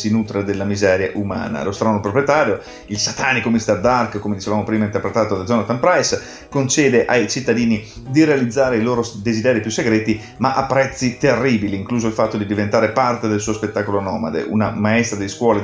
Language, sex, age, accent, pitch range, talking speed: Italian, male, 30-49, native, 105-120 Hz, 180 wpm